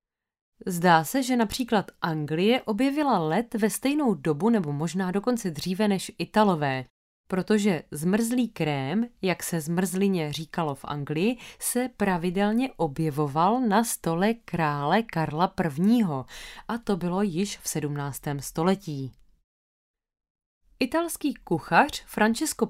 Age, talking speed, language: 20-39, 115 wpm, Czech